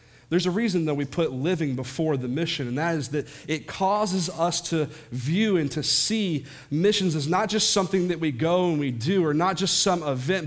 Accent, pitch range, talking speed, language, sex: American, 140-180 Hz, 220 wpm, English, male